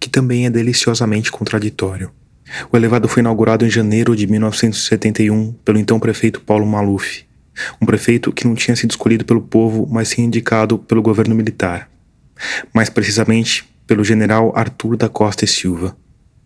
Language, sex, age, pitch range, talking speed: Portuguese, male, 20-39, 105-115 Hz, 155 wpm